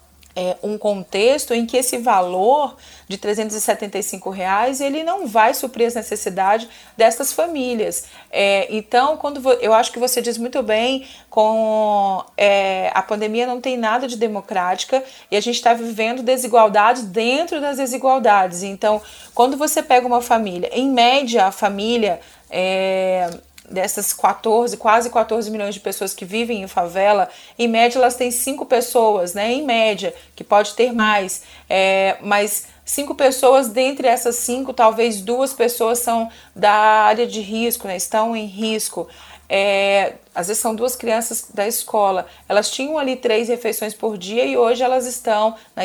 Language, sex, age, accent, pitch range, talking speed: Portuguese, female, 30-49, Brazilian, 205-250 Hz, 160 wpm